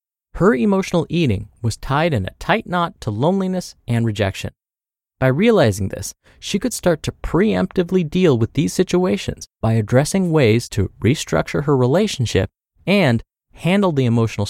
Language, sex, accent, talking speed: English, male, American, 150 wpm